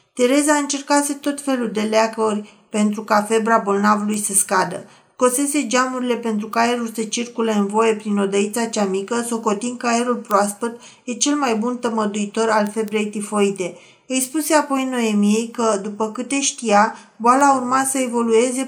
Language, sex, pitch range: Romanian, female, 215-260 Hz